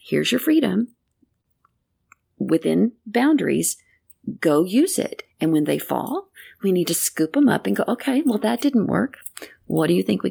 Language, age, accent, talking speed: English, 40-59, American, 175 wpm